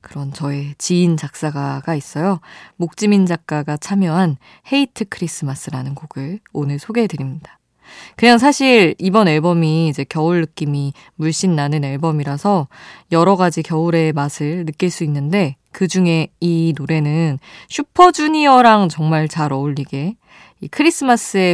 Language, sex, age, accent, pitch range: Korean, female, 20-39, native, 145-195 Hz